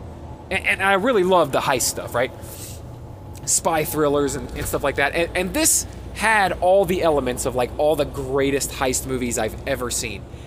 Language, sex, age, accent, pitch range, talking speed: English, male, 20-39, American, 120-185 Hz, 190 wpm